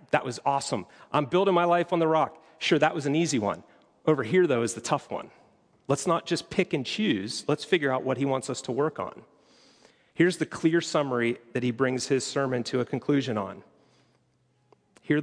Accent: American